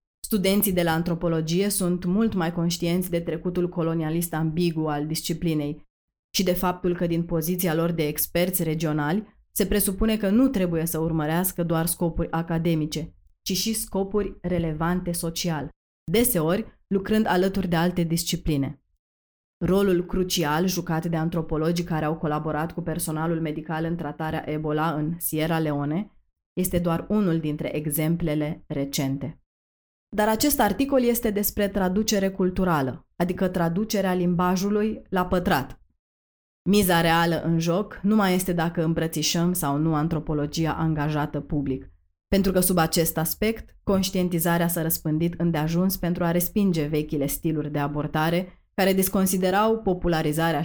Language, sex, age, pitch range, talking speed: Romanian, female, 20-39, 155-185 Hz, 135 wpm